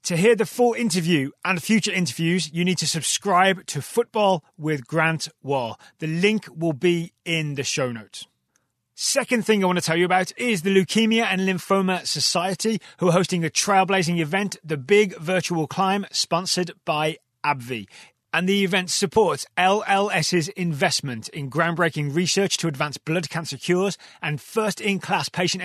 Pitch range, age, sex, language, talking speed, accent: 155-195 Hz, 30-49, male, English, 165 wpm, British